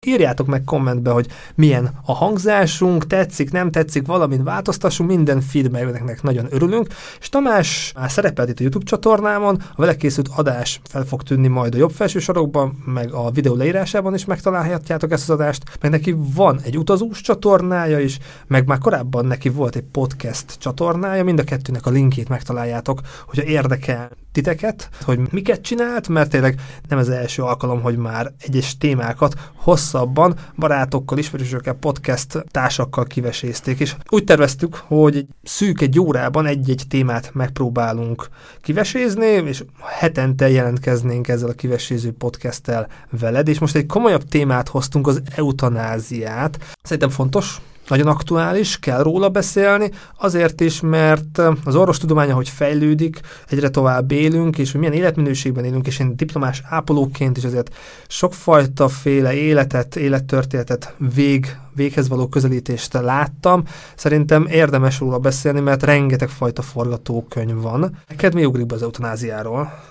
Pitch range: 130-160 Hz